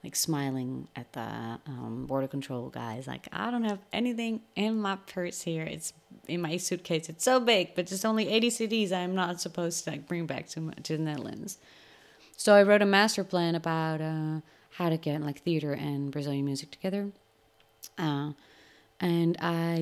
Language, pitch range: English, 145-175 Hz